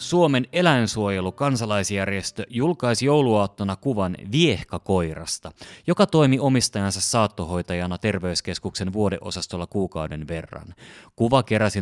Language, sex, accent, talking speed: Finnish, male, native, 85 wpm